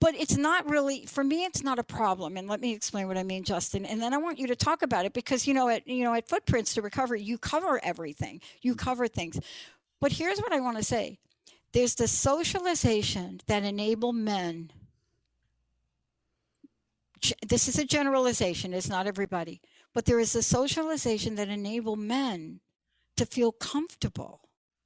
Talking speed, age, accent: 180 wpm, 60-79, American